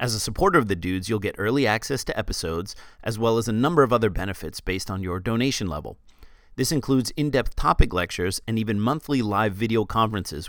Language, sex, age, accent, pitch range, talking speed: English, male, 30-49, American, 95-125 Hz, 205 wpm